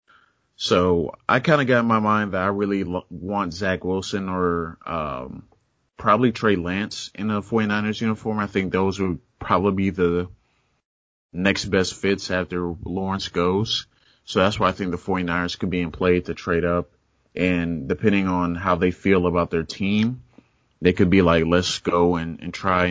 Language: English